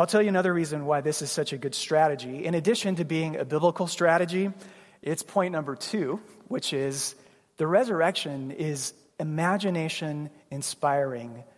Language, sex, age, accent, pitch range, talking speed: English, male, 30-49, American, 145-195 Hz, 150 wpm